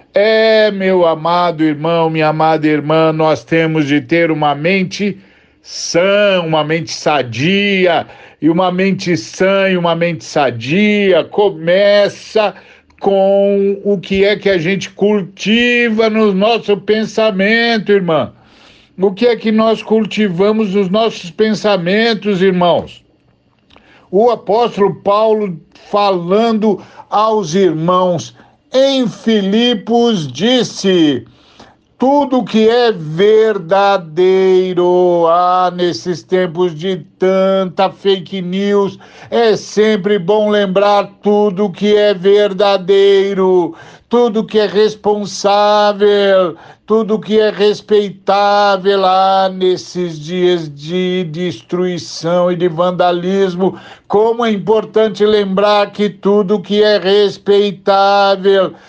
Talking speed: 105 wpm